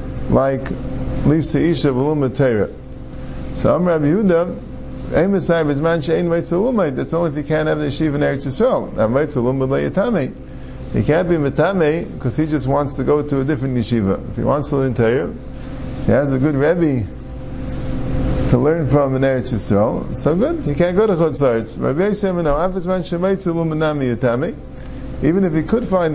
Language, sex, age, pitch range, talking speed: English, male, 50-69, 115-160 Hz, 135 wpm